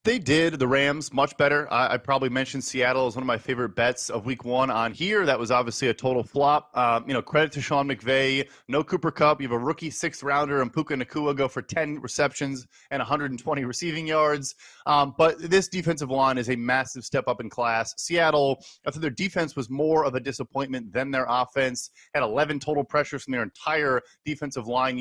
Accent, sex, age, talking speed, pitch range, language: American, male, 30-49, 215 wpm, 130-150 Hz, English